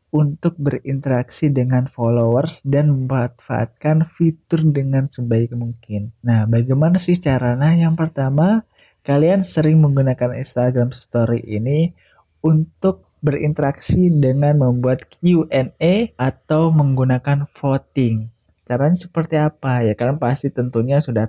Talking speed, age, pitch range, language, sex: 105 wpm, 20-39, 120-155 Hz, Indonesian, male